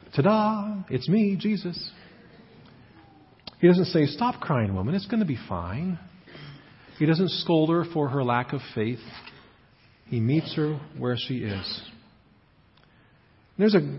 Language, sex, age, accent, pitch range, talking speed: English, male, 40-59, American, 115-145 Hz, 135 wpm